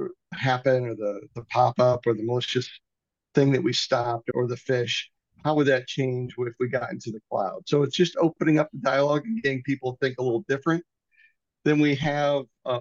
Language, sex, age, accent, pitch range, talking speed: English, male, 50-69, American, 130-150 Hz, 205 wpm